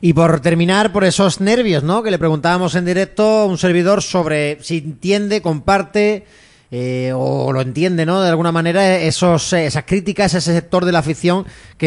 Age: 30-49